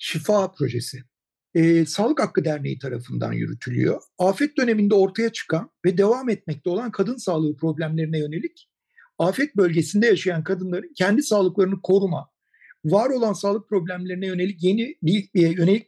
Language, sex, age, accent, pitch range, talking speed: Turkish, male, 60-79, native, 165-225 Hz, 130 wpm